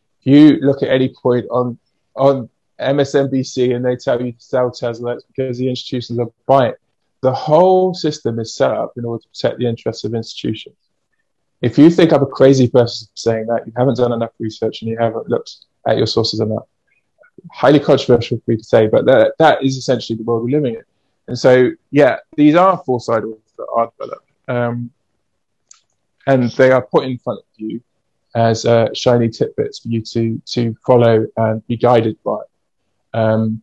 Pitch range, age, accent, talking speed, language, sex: 115-130 Hz, 20-39, British, 190 wpm, English, male